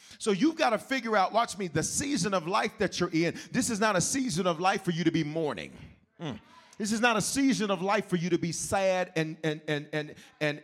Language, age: English, 40-59